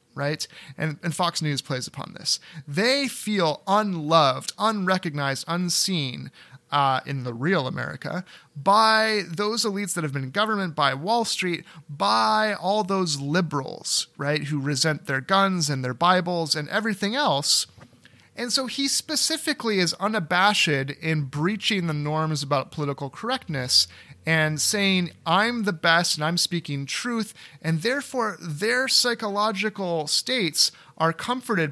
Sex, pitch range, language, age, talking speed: male, 140-195 Hz, English, 30-49, 140 wpm